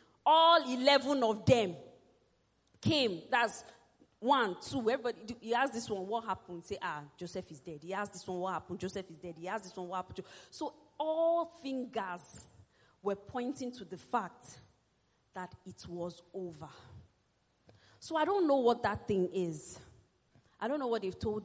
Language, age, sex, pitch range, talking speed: English, 40-59, female, 185-270 Hz, 170 wpm